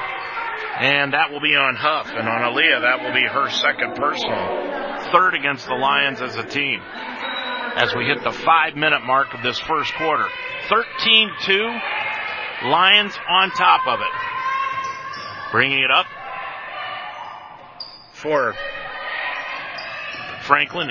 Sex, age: male, 40-59